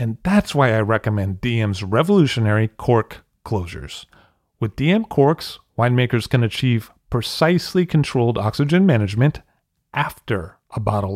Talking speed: 120 wpm